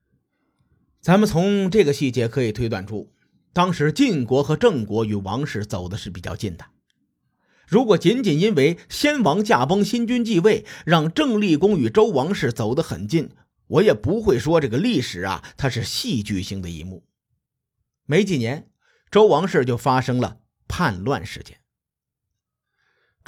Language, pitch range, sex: Chinese, 115-185 Hz, male